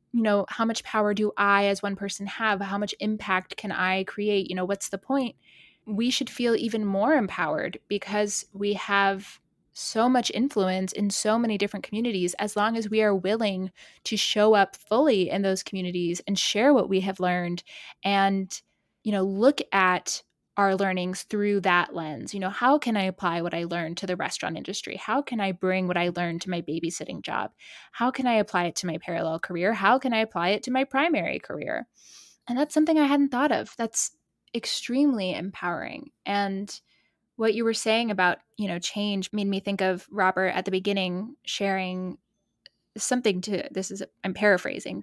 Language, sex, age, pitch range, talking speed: English, female, 20-39, 190-225 Hz, 190 wpm